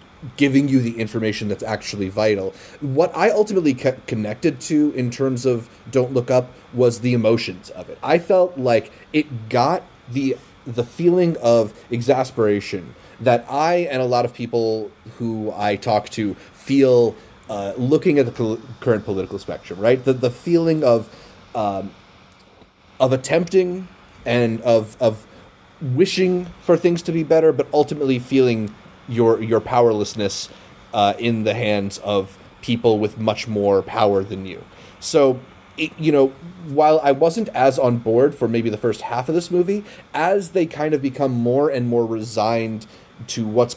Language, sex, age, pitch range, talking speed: English, male, 30-49, 110-150 Hz, 160 wpm